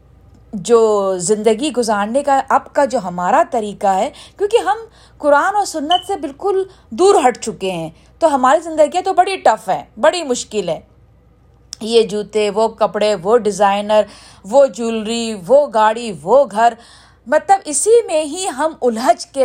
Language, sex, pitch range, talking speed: Urdu, female, 220-320 Hz, 155 wpm